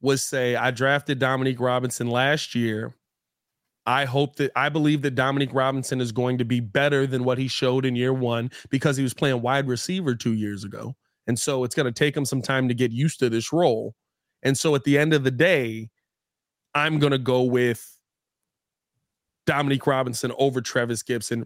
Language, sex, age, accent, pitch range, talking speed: English, male, 30-49, American, 120-150 Hz, 195 wpm